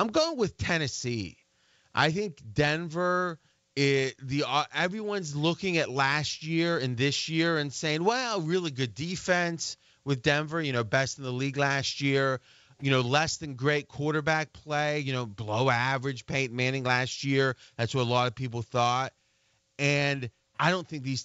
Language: English